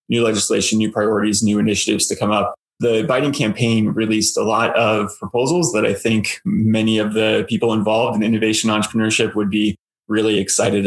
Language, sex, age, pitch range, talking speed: English, male, 20-39, 110-120 Hz, 175 wpm